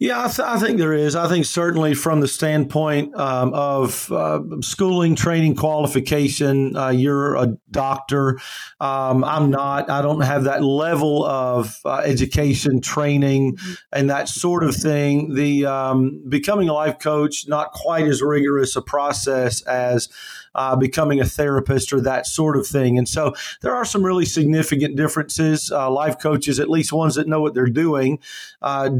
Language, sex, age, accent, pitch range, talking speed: English, male, 40-59, American, 135-155 Hz, 165 wpm